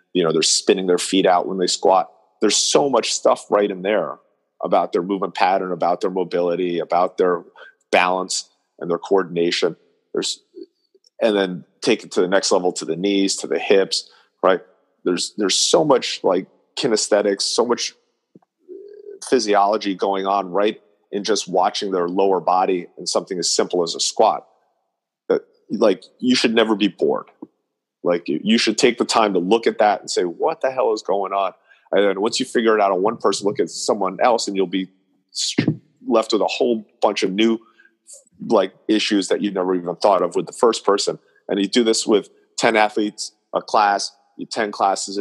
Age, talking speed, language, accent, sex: 40-59, 190 wpm, English, American, male